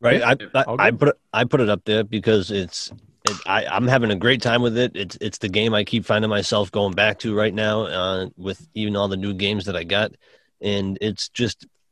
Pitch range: 95-115 Hz